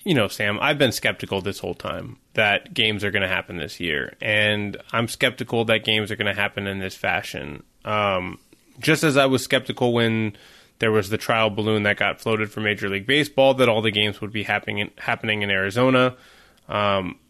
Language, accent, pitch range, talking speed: English, American, 105-130 Hz, 205 wpm